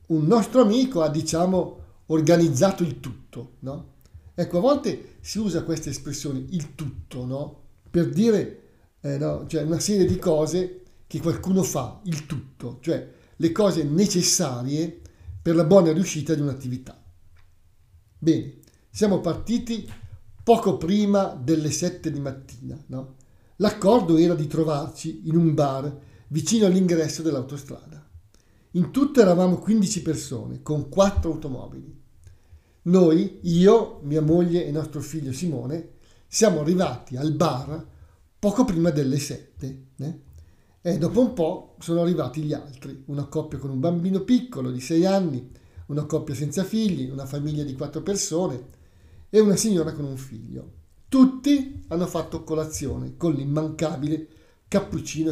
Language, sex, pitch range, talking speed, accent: Italian, male, 130-175 Hz, 140 wpm, native